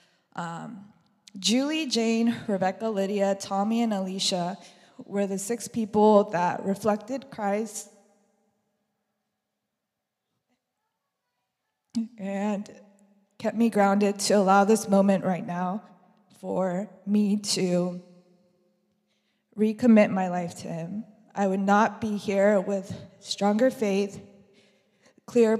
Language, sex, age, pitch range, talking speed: English, female, 20-39, 185-215 Hz, 100 wpm